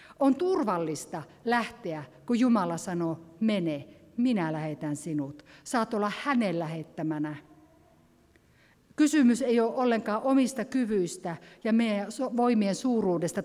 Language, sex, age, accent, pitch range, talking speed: Finnish, female, 50-69, native, 170-255 Hz, 105 wpm